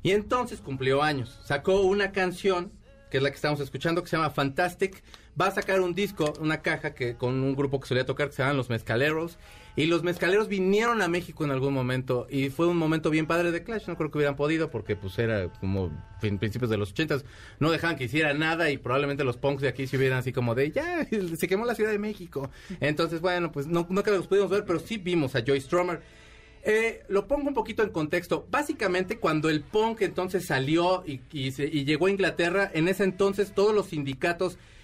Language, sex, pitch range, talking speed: Spanish, male, 140-195 Hz, 225 wpm